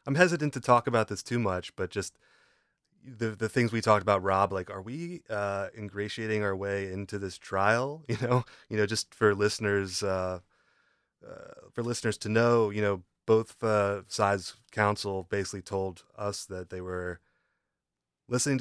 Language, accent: English, American